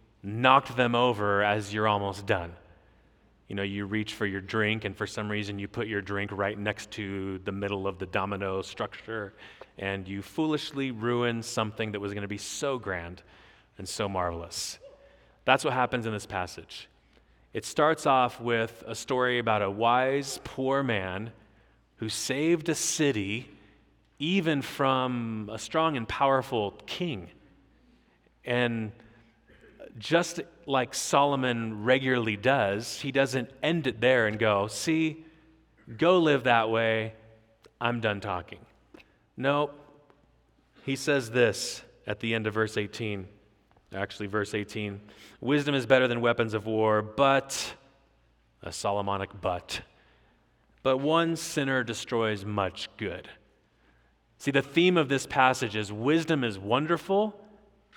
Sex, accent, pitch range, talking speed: male, American, 100-135 Hz, 140 wpm